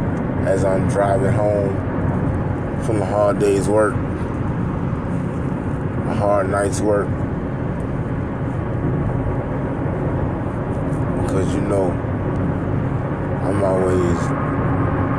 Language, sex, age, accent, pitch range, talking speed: English, male, 20-39, American, 95-130 Hz, 70 wpm